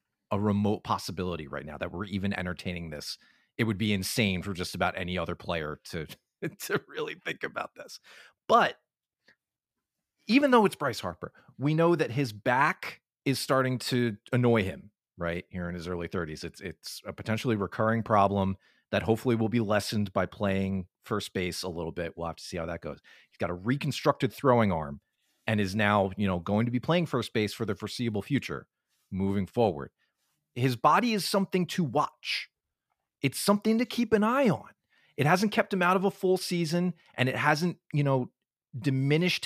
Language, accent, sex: English, American, male